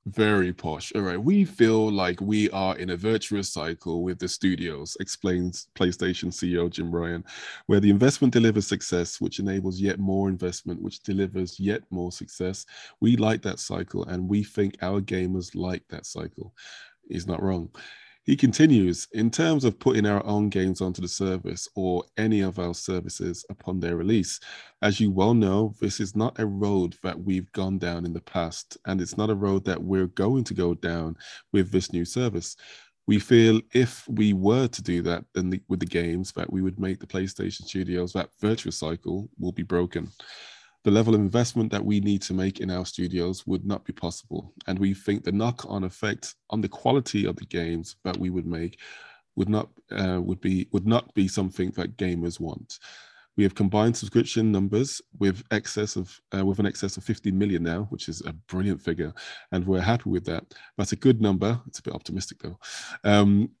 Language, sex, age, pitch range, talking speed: English, male, 20-39, 90-105 Hz, 195 wpm